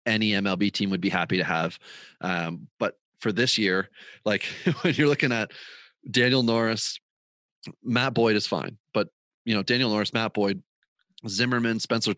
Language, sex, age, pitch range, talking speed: English, male, 30-49, 95-115 Hz, 165 wpm